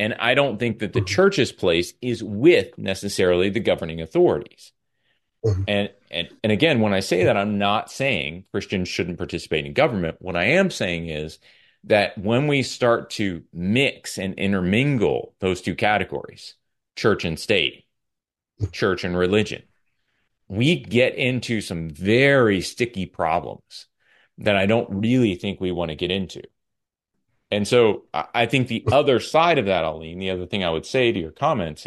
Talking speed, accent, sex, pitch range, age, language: 165 wpm, American, male, 90-115 Hz, 30-49, English